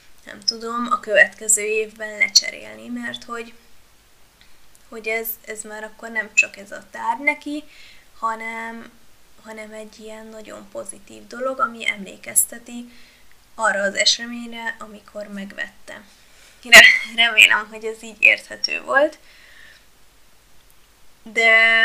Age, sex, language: 20-39, female, Hungarian